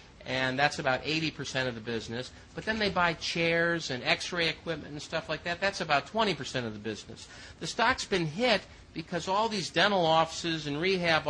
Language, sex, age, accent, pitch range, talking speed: English, male, 50-69, American, 145-185 Hz, 190 wpm